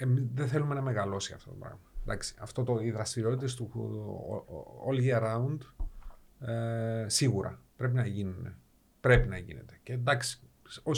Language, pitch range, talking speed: Greek, 115-140 Hz, 115 wpm